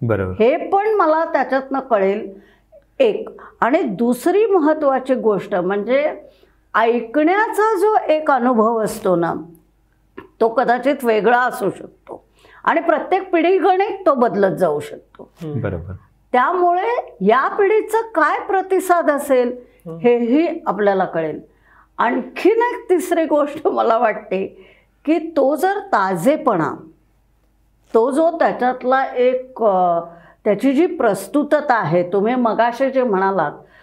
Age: 50-69